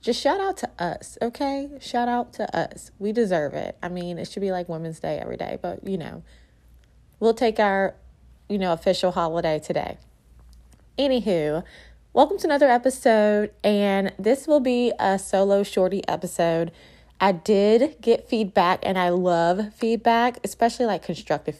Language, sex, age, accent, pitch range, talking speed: English, female, 20-39, American, 170-230 Hz, 160 wpm